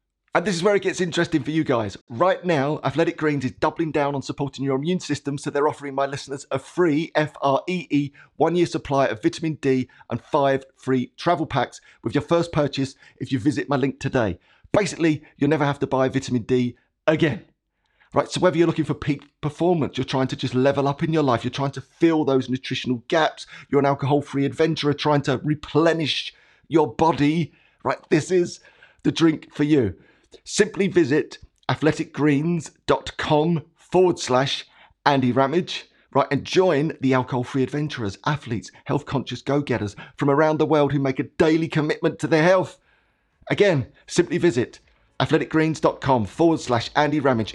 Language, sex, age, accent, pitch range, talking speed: English, male, 30-49, British, 135-160 Hz, 170 wpm